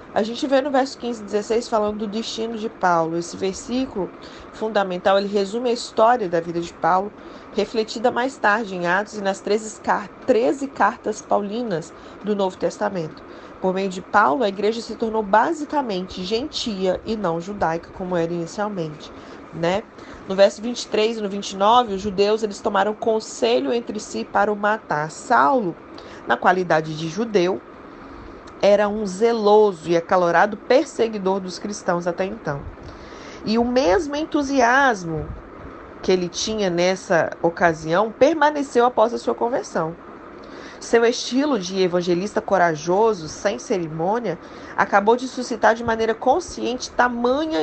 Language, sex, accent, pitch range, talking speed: Portuguese, female, Brazilian, 190-235 Hz, 140 wpm